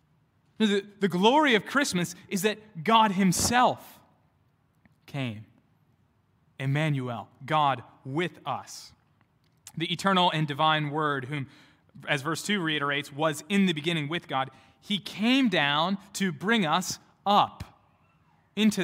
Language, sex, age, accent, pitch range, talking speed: English, male, 20-39, American, 135-185 Hz, 120 wpm